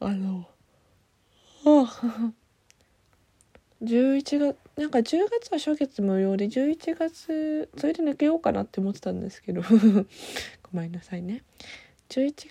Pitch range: 185-255 Hz